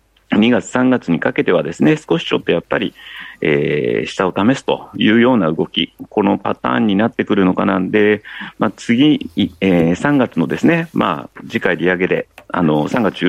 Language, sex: Japanese, male